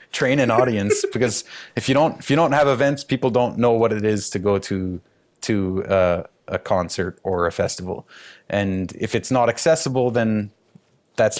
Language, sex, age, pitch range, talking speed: English, male, 30-49, 95-120 Hz, 185 wpm